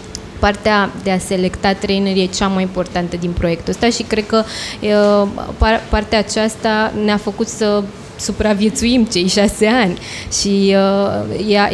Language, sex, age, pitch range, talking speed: Romanian, female, 20-39, 190-230 Hz, 145 wpm